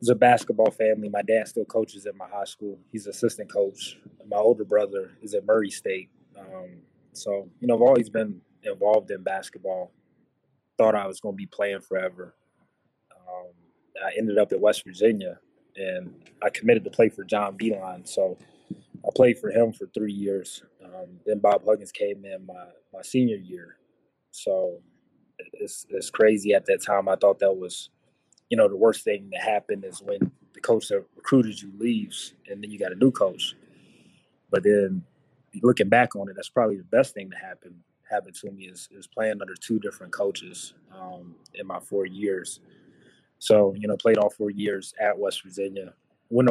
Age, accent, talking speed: 20-39, American, 185 wpm